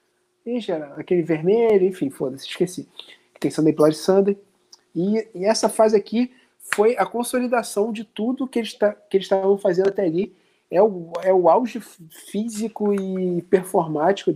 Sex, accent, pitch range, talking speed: male, Brazilian, 170-220 Hz, 150 wpm